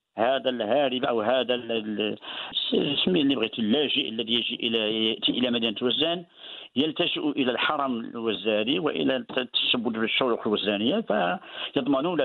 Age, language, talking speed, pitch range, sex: 50-69, Arabic, 110 wpm, 120-170 Hz, male